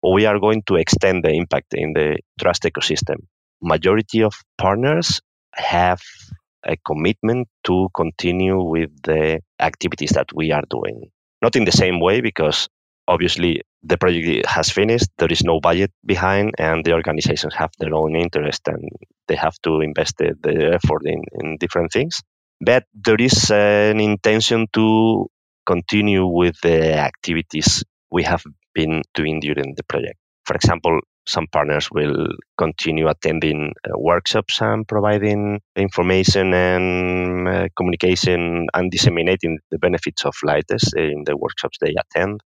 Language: English